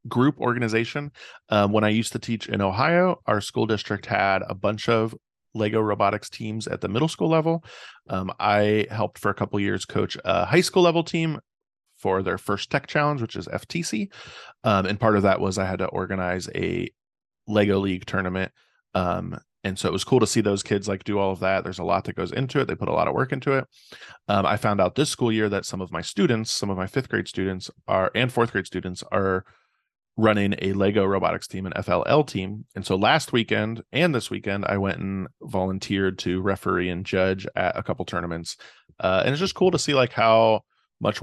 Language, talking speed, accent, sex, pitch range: English, 220 wpm, American, male, 95-120 Hz